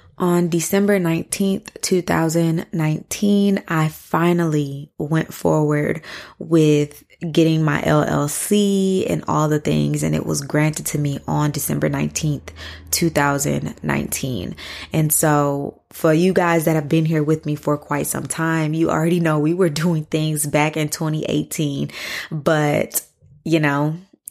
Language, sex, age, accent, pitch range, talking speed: English, female, 20-39, American, 150-170 Hz, 125 wpm